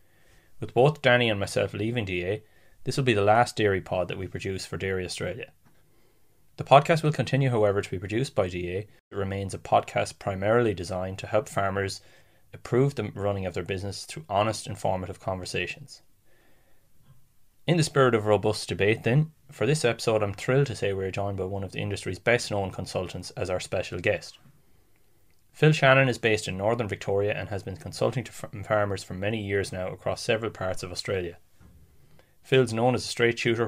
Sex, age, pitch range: male, 20-39, 95-125 Hz